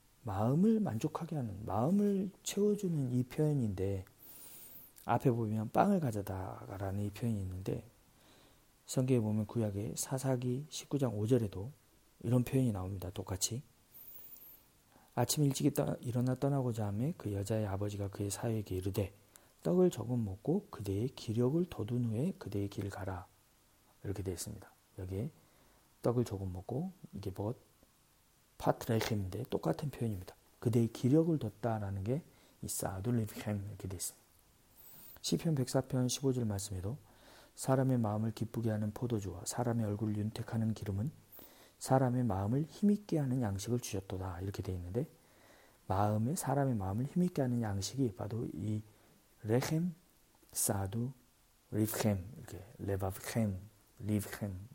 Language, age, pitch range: Korean, 40-59, 105-130 Hz